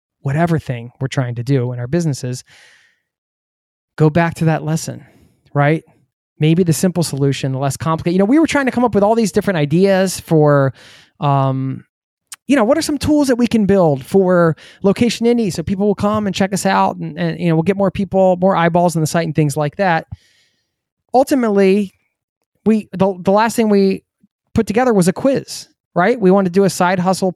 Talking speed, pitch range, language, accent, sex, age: 210 wpm, 140-200 Hz, English, American, male, 20-39